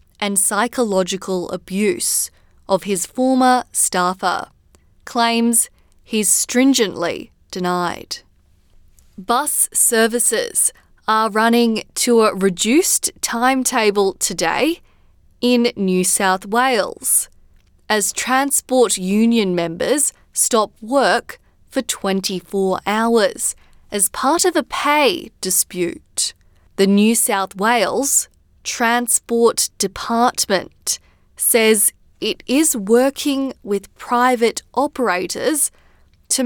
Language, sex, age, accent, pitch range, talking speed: English, female, 20-39, Australian, 195-255 Hz, 85 wpm